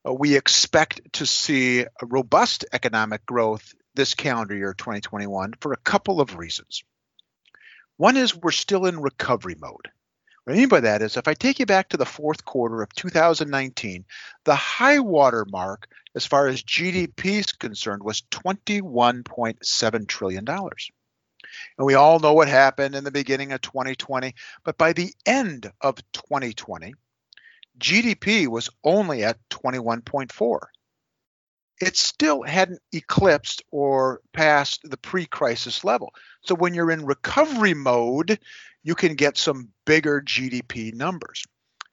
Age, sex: 50-69, male